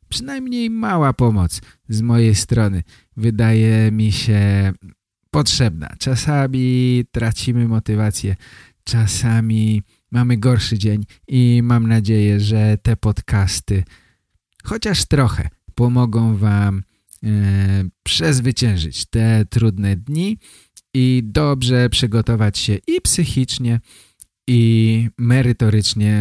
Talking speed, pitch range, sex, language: 90 wpm, 100-125 Hz, male, Polish